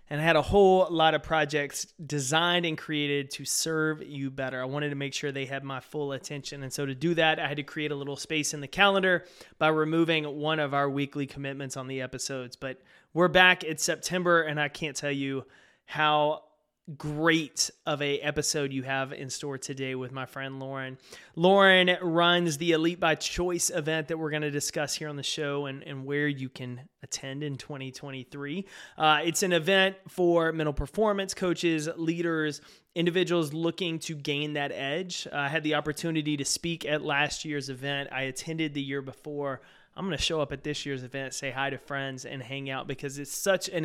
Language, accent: English, American